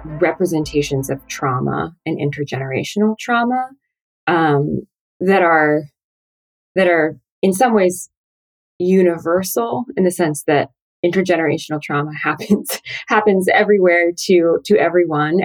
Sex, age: female, 20-39